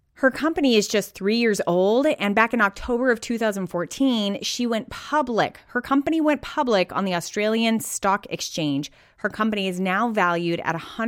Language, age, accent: English, 30-49, American